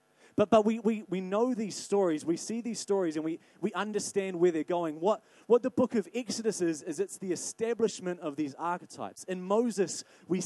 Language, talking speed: English, 205 wpm